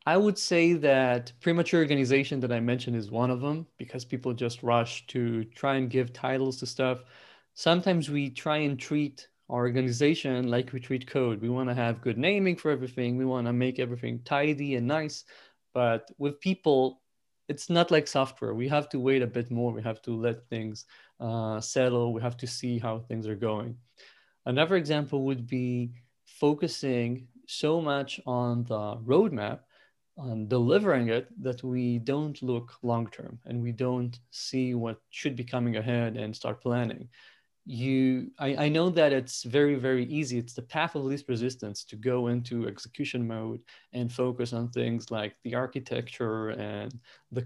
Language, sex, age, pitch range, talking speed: Italian, male, 30-49, 120-140 Hz, 175 wpm